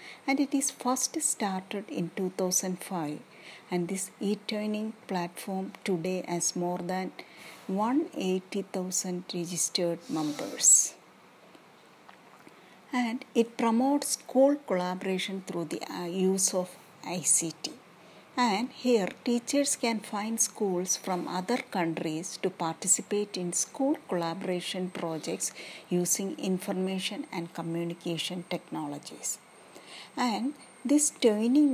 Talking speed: 95 wpm